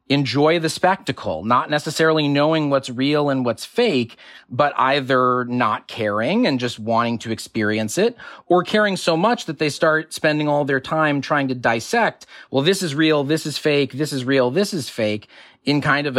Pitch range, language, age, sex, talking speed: 115-155 Hz, English, 30-49, male, 190 wpm